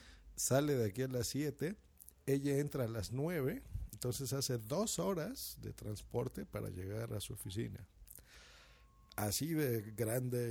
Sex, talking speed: male, 145 wpm